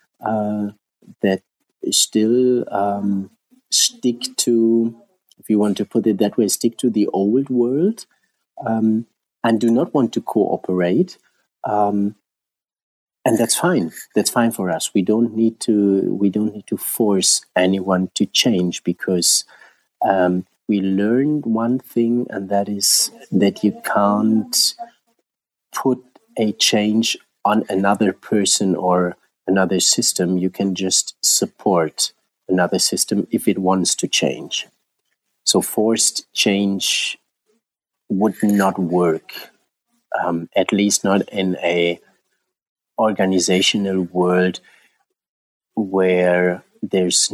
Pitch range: 90-115 Hz